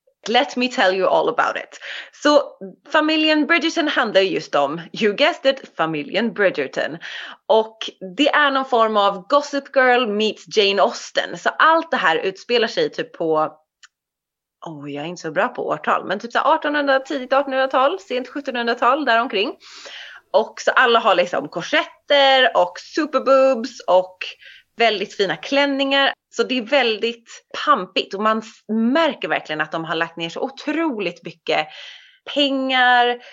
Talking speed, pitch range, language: 155 wpm, 185-285 Hz, Swedish